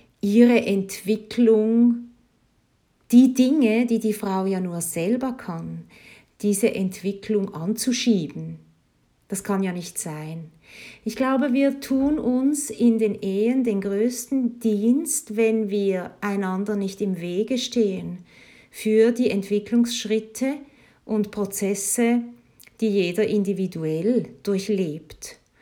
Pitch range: 195-240 Hz